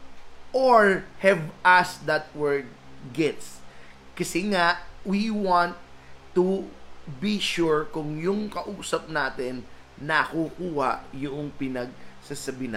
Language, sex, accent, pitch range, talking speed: Filipino, male, native, 125-180 Hz, 100 wpm